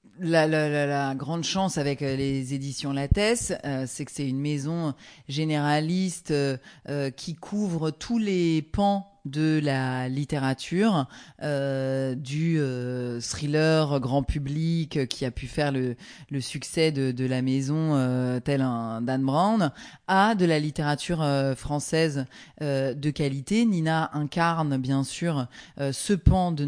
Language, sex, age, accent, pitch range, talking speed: French, female, 30-49, French, 140-170 Hz, 145 wpm